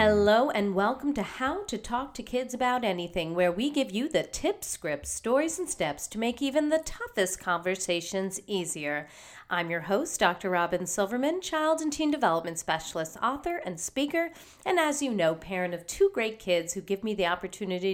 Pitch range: 175-285 Hz